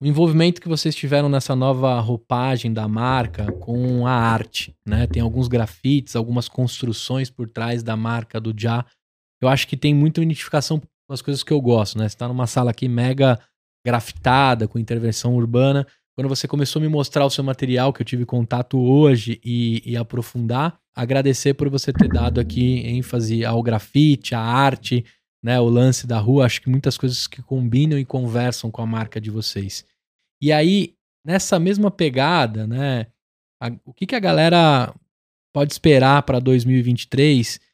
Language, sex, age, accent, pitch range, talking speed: Portuguese, male, 20-39, Brazilian, 120-145 Hz, 175 wpm